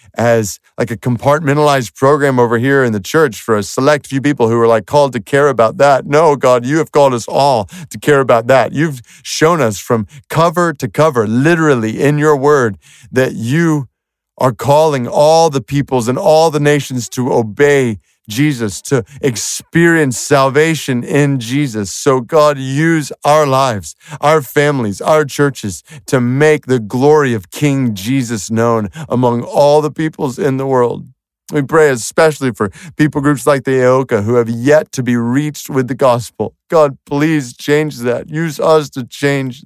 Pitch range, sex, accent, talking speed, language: 105-145 Hz, male, American, 170 wpm, English